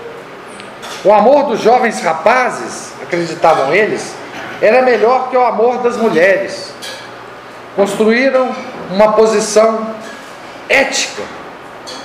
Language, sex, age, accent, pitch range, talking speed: Portuguese, male, 50-69, Brazilian, 185-250 Hz, 90 wpm